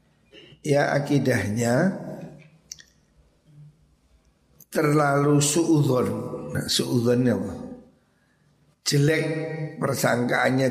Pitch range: 115-150 Hz